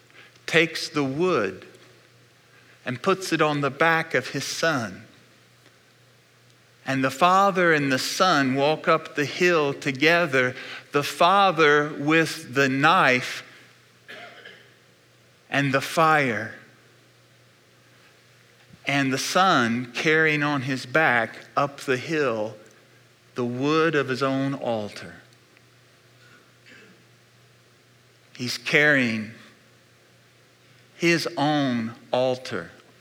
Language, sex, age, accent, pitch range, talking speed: English, male, 40-59, American, 120-155 Hz, 95 wpm